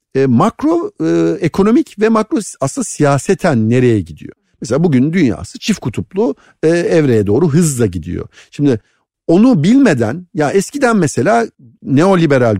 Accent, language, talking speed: native, Turkish, 130 wpm